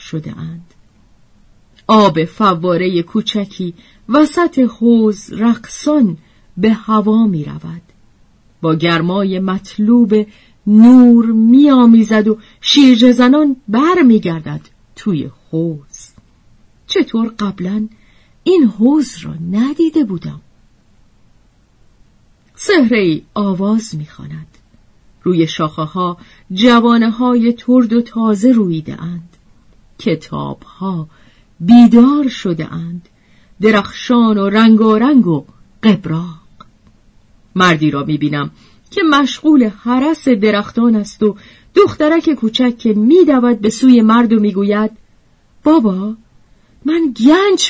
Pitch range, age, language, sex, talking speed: 155-240 Hz, 40-59, Persian, female, 95 wpm